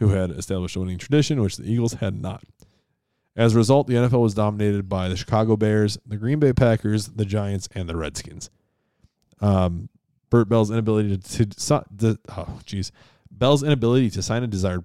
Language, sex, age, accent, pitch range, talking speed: English, male, 20-39, American, 100-120 Hz, 185 wpm